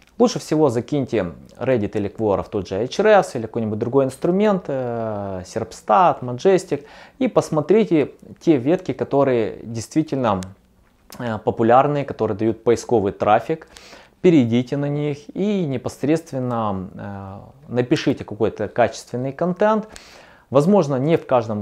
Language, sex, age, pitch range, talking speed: Russian, male, 20-39, 105-145 Hz, 110 wpm